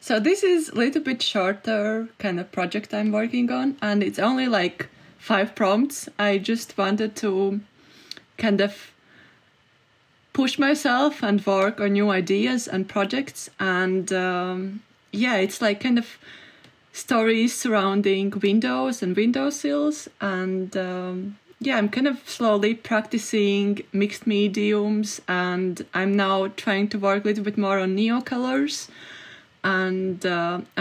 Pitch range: 195-240 Hz